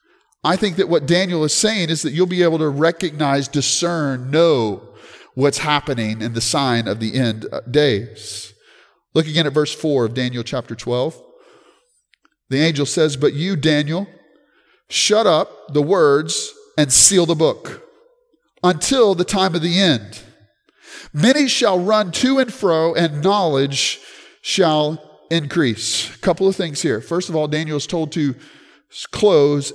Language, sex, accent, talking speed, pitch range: English, male, American, 155 wpm, 145-220 Hz